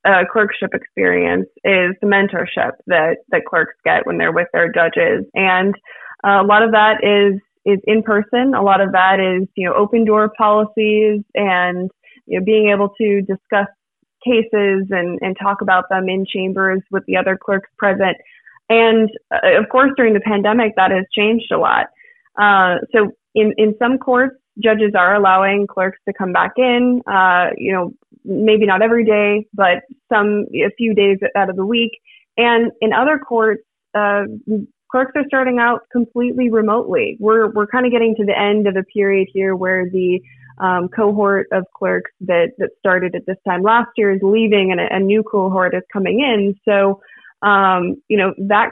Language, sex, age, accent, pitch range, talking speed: English, female, 20-39, American, 190-225 Hz, 185 wpm